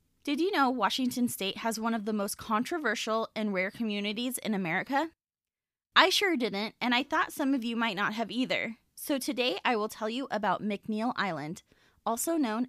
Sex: female